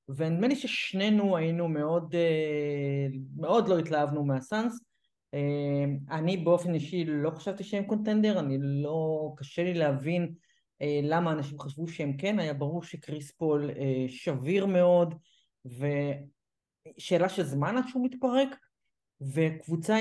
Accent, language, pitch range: native, Hebrew, 150-200 Hz